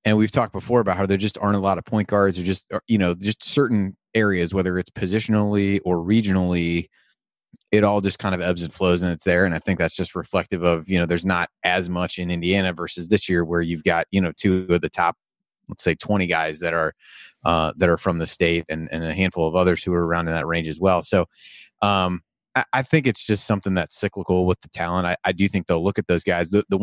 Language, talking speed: English, 255 wpm